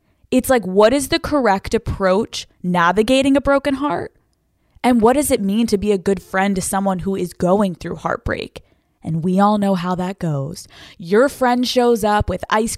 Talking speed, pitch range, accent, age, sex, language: 195 wpm, 185-230 Hz, American, 20-39, female, English